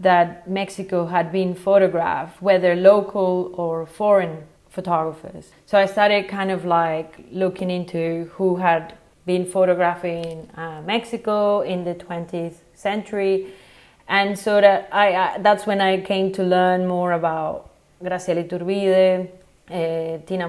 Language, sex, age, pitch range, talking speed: English, female, 30-49, 175-195 Hz, 130 wpm